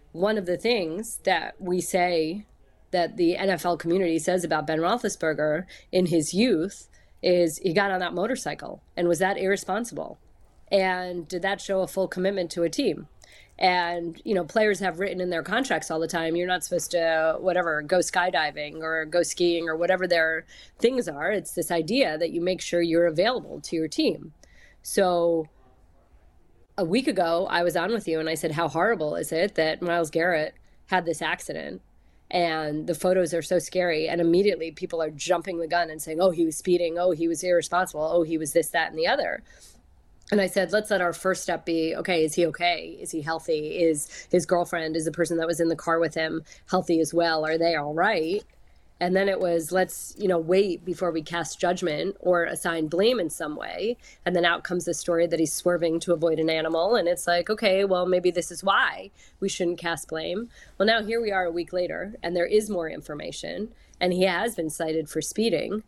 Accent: American